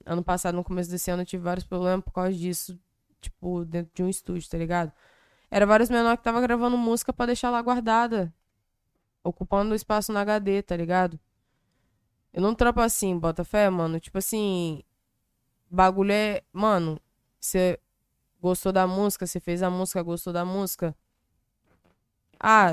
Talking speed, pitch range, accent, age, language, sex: 160 wpm, 180-225 Hz, Brazilian, 20-39, Portuguese, female